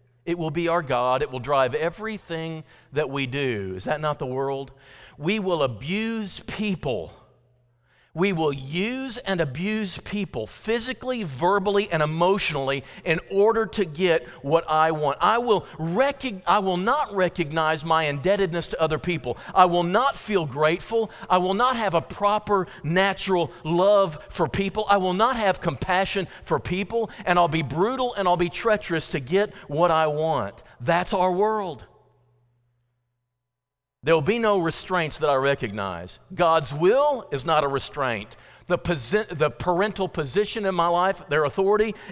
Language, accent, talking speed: English, American, 160 wpm